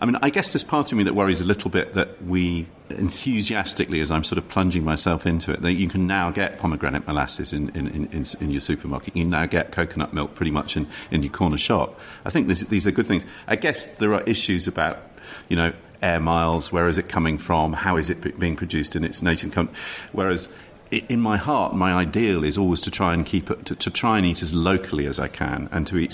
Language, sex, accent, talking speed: English, male, British, 245 wpm